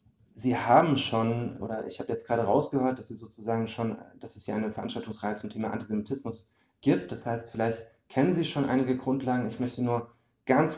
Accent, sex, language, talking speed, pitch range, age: German, male, German, 165 wpm, 105-125 Hz, 30-49